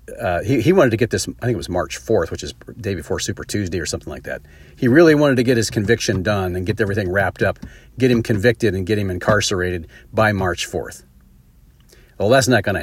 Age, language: 40-59, English